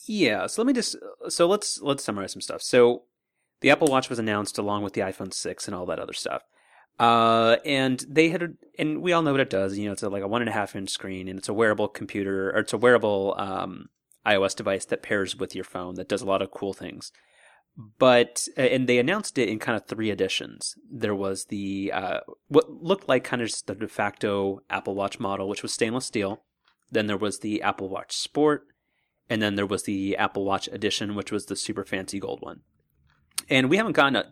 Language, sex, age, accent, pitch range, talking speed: English, male, 30-49, American, 100-120 Hz, 230 wpm